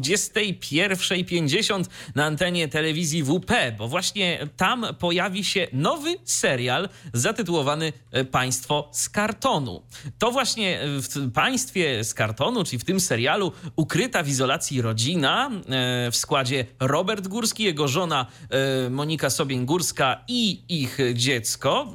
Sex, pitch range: male, 125-170 Hz